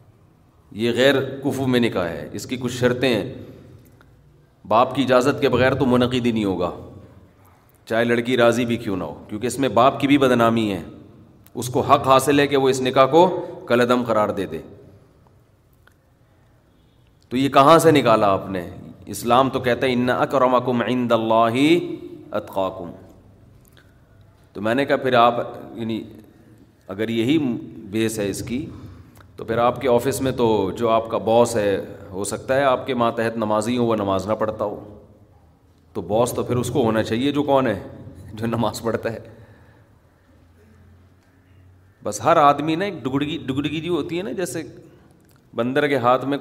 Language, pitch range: Urdu, 105-135 Hz